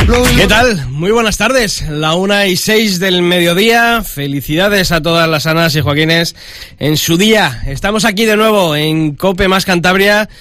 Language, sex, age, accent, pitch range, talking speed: Spanish, male, 30-49, Spanish, 145-175 Hz, 165 wpm